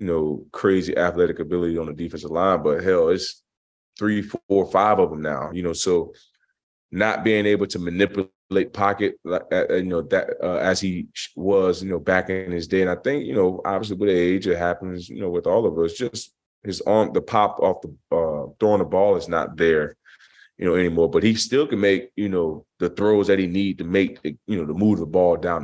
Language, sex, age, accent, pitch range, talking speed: English, male, 20-39, American, 85-100 Hz, 220 wpm